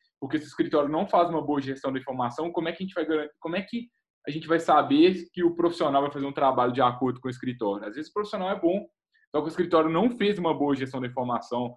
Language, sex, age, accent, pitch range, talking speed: Portuguese, male, 10-29, Brazilian, 140-190 Hz, 275 wpm